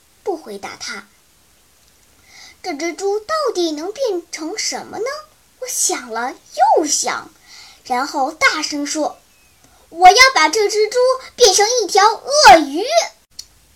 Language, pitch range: Chinese, 310-445 Hz